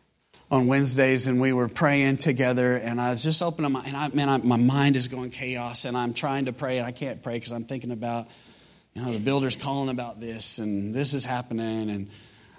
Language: English